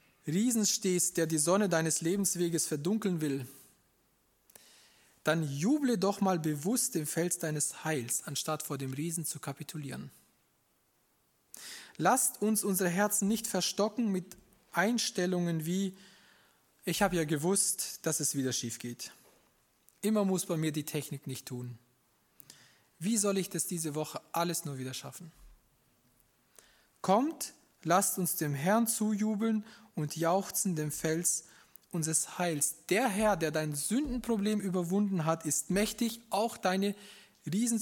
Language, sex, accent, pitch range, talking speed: German, male, German, 160-205 Hz, 135 wpm